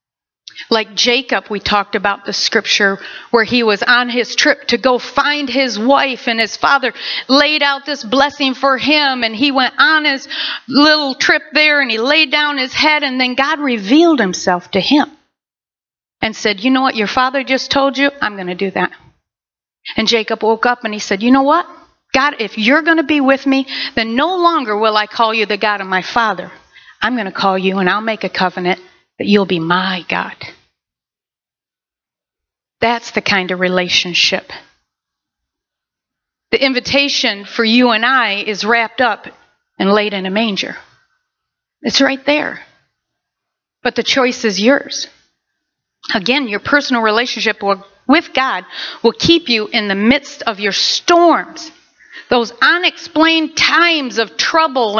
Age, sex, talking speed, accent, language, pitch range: 50-69, female, 170 wpm, American, English, 215-285 Hz